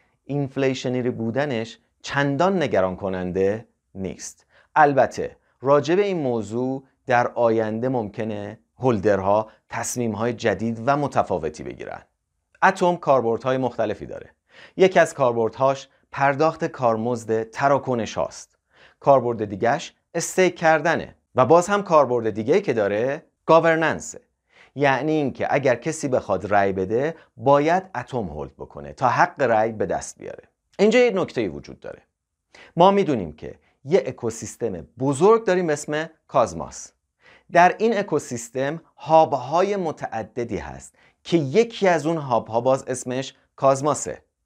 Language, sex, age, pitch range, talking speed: Persian, male, 30-49, 115-165 Hz, 120 wpm